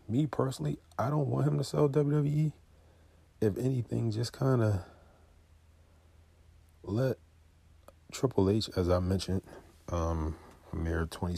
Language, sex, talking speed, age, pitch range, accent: English, male, 115 wpm, 40-59, 80-95 Hz, American